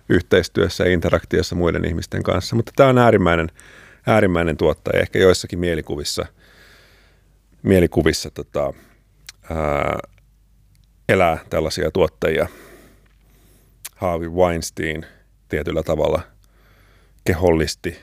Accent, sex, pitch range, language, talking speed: native, male, 80-100 Hz, Finnish, 85 wpm